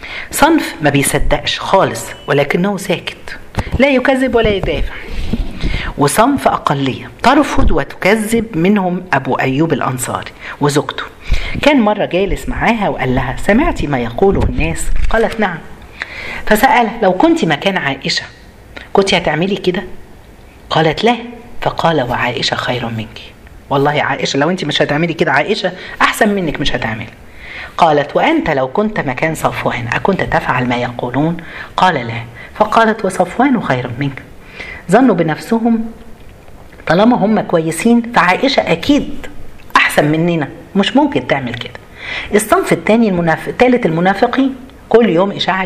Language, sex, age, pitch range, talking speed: Arabic, female, 40-59, 140-225 Hz, 125 wpm